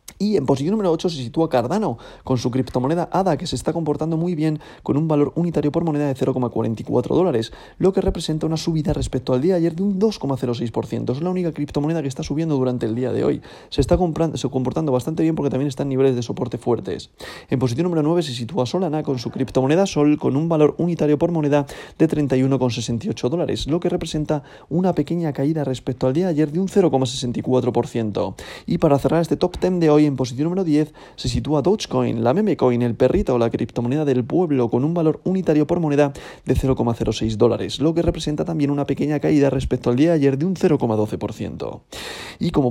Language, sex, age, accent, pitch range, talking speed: Spanish, male, 30-49, Spanish, 125-155 Hz, 210 wpm